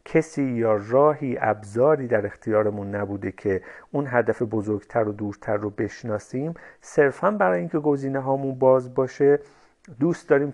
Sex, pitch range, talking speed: male, 105-140 Hz, 130 wpm